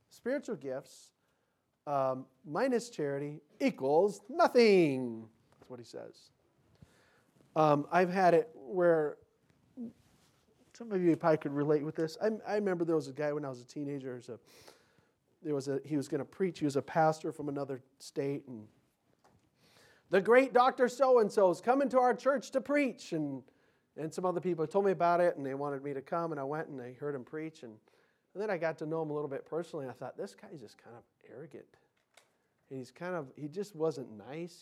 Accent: American